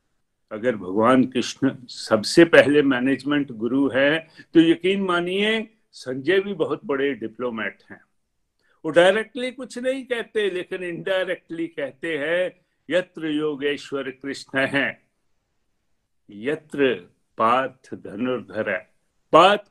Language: Hindi